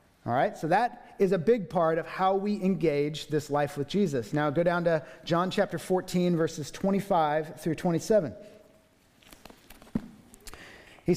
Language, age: English, 40-59